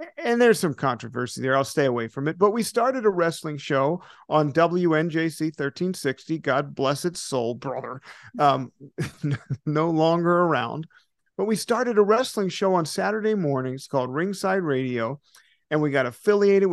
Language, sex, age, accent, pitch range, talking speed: English, male, 50-69, American, 140-190 Hz, 160 wpm